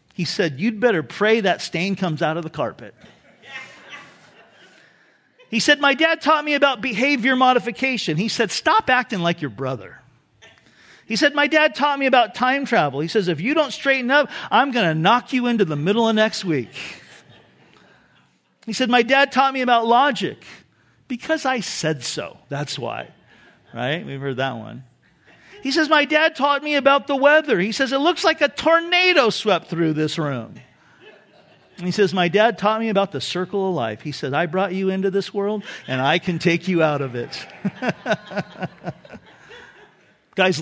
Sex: male